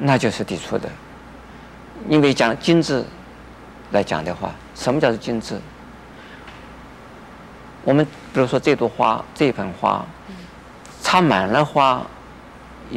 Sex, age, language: male, 50-69, Chinese